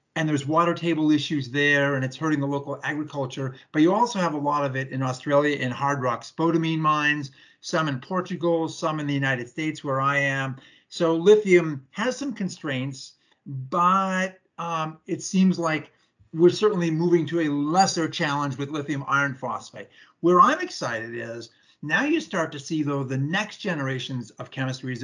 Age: 50-69